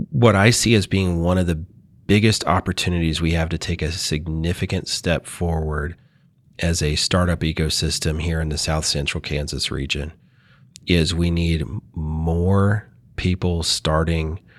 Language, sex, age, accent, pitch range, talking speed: English, male, 30-49, American, 80-100 Hz, 145 wpm